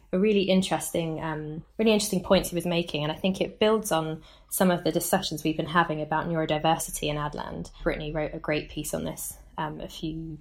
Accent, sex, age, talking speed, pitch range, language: British, female, 20-39, 220 wpm, 160-185 Hz, English